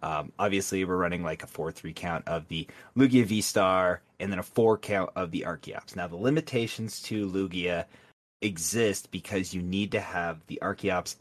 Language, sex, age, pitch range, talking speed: English, male, 30-49, 85-105 Hz, 175 wpm